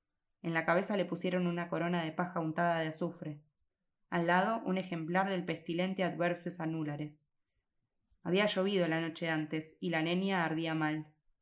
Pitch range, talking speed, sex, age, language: 160-180 Hz, 160 wpm, female, 20-39, Spanish